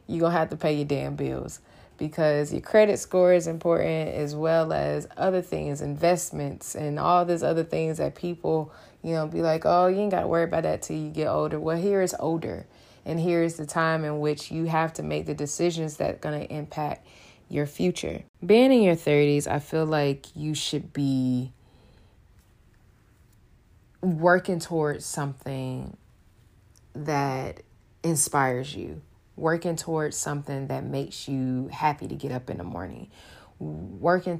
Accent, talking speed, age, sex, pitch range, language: American, 170 wpm, 20-39, female, 135-165 Hz, English